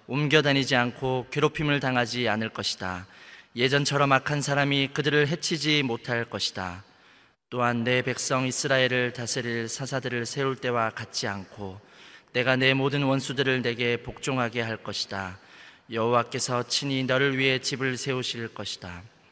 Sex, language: male, Korean